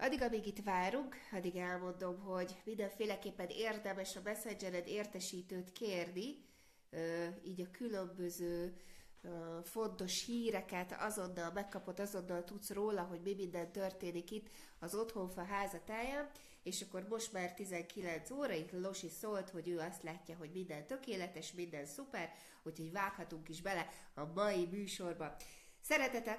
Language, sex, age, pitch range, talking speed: Hungarian, female, 30-49, 175-215 Hz, 130 wpm